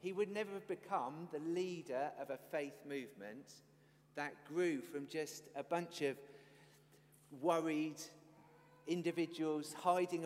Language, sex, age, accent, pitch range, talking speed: English, male, 40-59, British, 145-180 Hz, 125 wpm